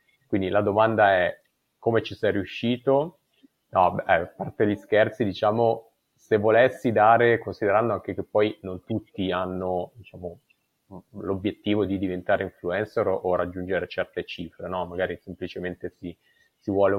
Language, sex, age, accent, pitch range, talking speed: Italian, male, 30-49, native, 90-115 Hz, 145 wpm